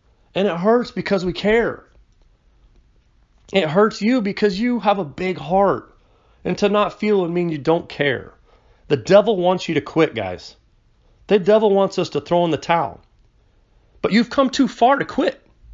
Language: English